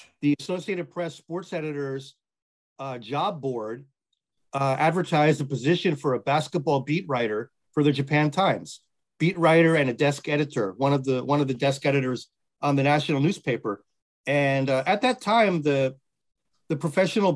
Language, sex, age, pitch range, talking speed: English, male, 40-59, 145-180 Hz, 165 wpm